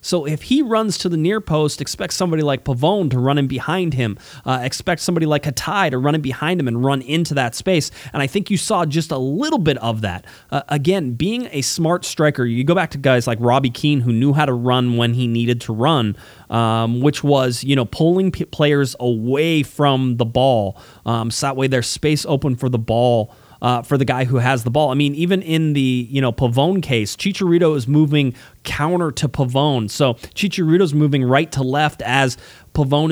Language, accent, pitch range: English, American, 125-155 Hz